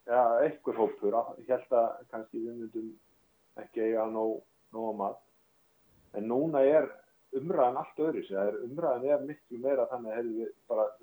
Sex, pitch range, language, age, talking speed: male, 110-145 Hz, English, 30-49, 145 wpm